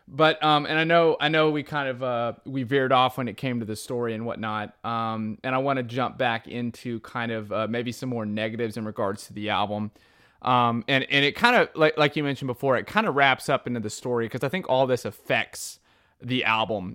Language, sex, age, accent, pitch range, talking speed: English, male, 30-49, American, 120-160 Hz, 240 wpm